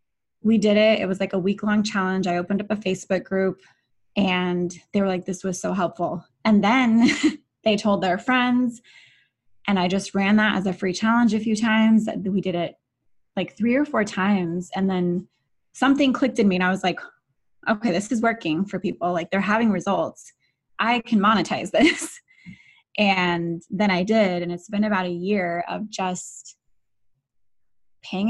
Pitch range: 180-220 Hz